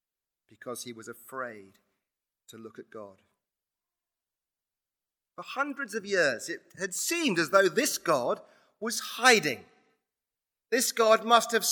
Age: 40-59